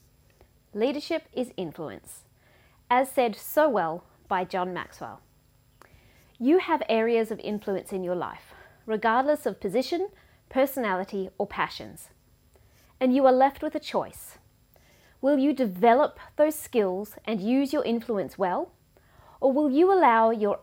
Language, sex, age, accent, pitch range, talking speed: English, female, 30-49, Australian, 210-275 Hz, 135 wpm